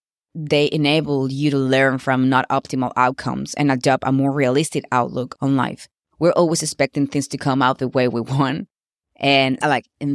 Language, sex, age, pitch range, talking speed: English, female, 20-39, 135-165 Hz, 185 wpm